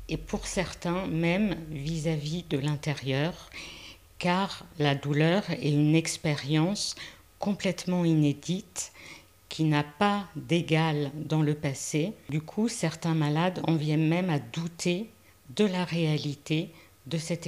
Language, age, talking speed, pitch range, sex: French, 50-69, 125 wpm, 150-175 Hz, female